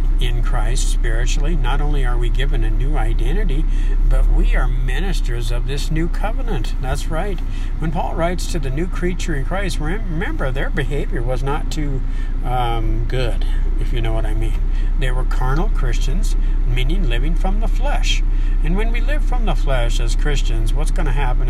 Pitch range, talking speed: 115-150 Hz, 185 wpm